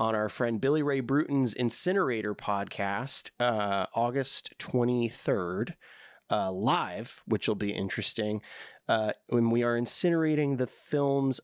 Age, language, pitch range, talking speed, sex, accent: 30-49, English, 105-135 Hz, 125 wpm, male, American